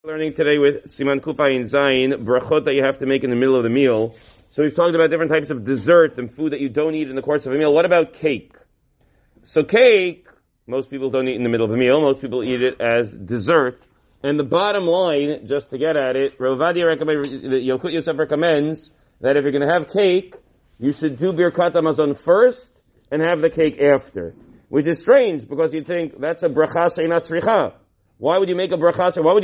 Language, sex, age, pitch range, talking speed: English, male, 40-59, 140-195 Hz, 220 wpm